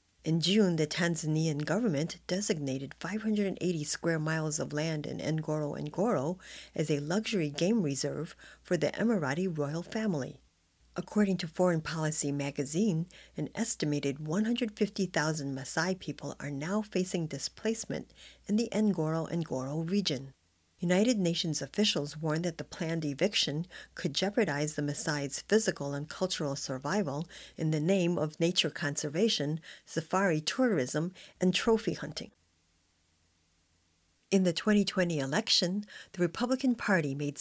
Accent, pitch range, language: American, 150-195 Hz, English